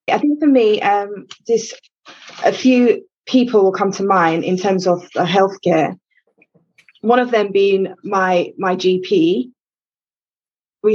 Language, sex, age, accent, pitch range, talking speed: English, female, 20-39, British, 185-240 Hz, 135 wpm